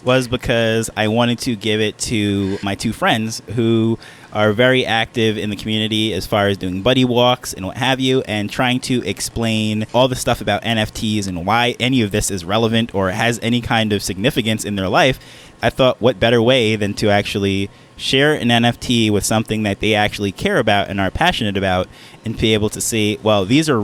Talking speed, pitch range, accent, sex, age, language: 210 wpm, 105-125 Hz, American, male, 20-39, English